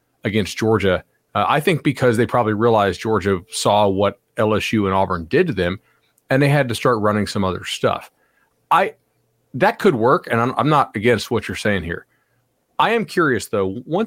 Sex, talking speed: male, 190 wpm